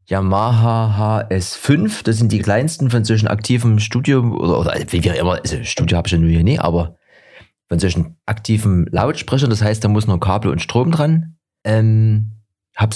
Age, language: 30-49, German